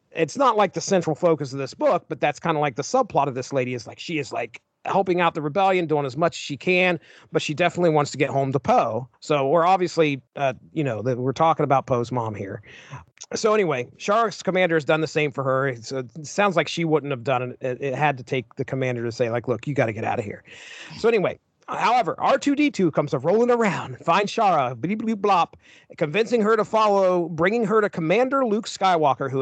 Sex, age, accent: male, 40-59, American